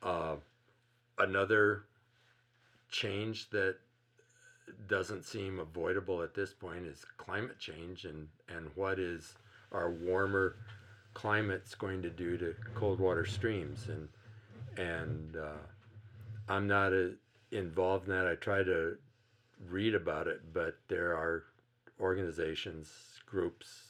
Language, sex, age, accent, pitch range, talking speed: English, male, 50-69, American, 85-115 Hz, 115 wpm